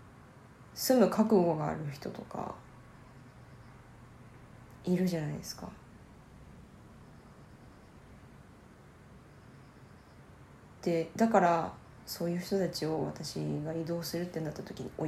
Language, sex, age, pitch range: Japanese, female, 20-39, 155-190 Hz